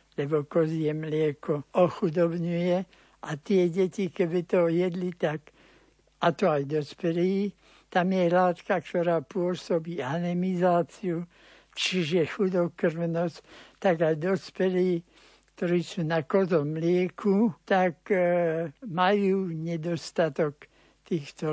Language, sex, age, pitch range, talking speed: Slovak, male, 60-79, 170-200 Hz, 100 wpm